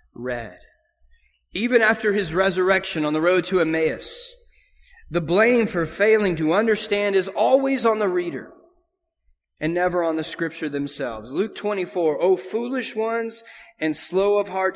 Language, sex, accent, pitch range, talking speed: English, male, American, 160-225 Hz, 145 wpm